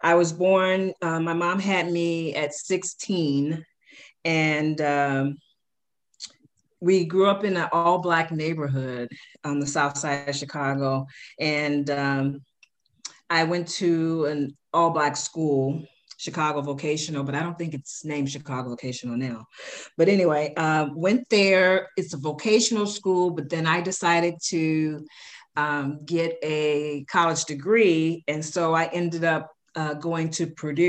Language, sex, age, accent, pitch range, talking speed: English, female, 40-59, American, 145-170 Hz, 140 wpm